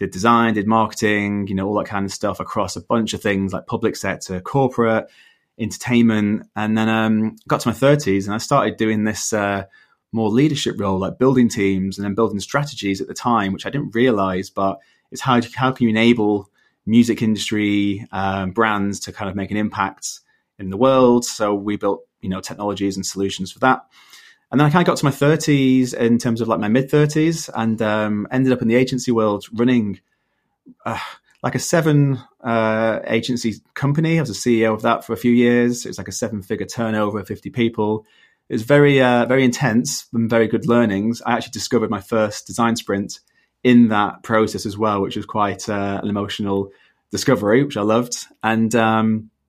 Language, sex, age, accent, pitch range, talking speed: English, male, 30-49, British, 100-120 Hz, 200 wpm